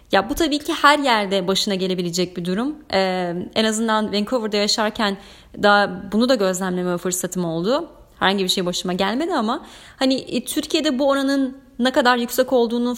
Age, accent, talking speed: 30-49, native, 165 wpm